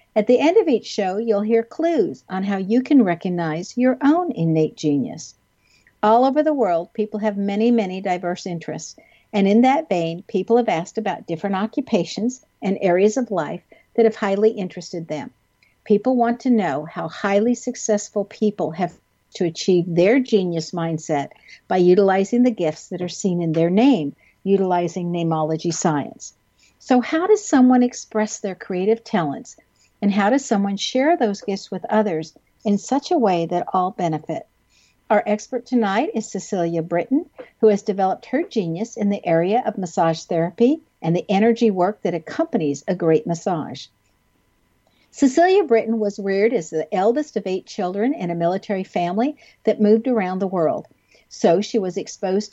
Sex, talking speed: female, 170 wpm